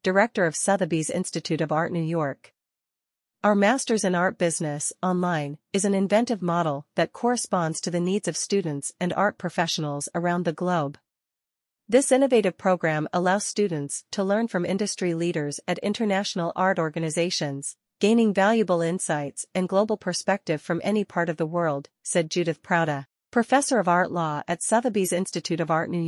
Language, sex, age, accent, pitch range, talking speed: English, female, 40-59, American, 160-195 Hz, 160 wpm